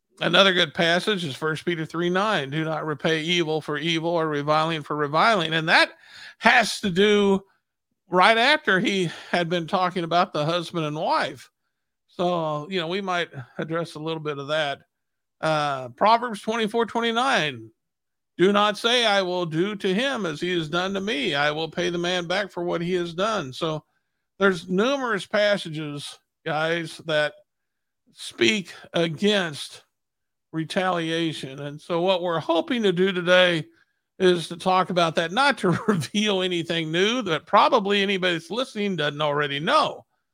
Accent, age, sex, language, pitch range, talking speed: American, 50-69, male, English, 160-195 Hz, 165 wpm